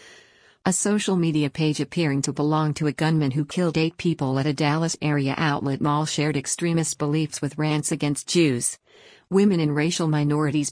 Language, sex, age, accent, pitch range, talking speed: English, female, 50-69, American, 145-170 Hz, 175 wpm